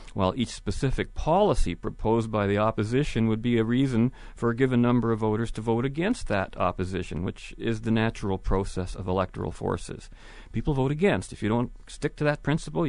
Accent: American